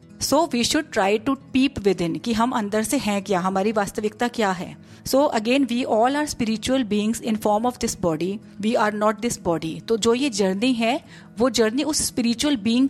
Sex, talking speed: female, 210 wpm